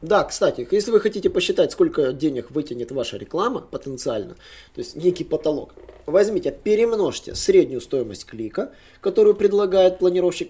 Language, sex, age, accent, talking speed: Russian, male, 20-39, native, 135 wpm